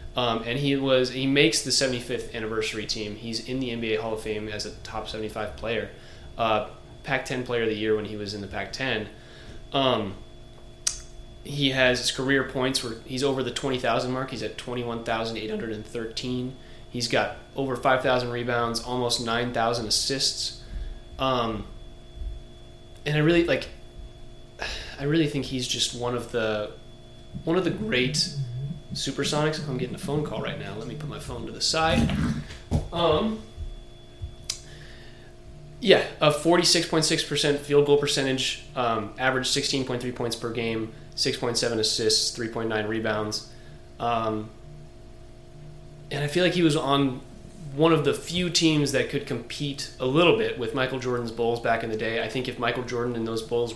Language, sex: English, male